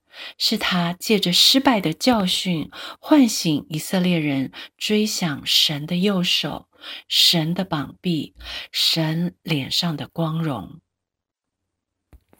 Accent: native